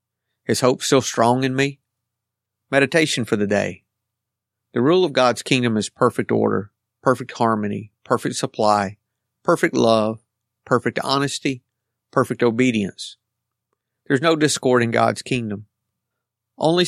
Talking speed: 125 wpm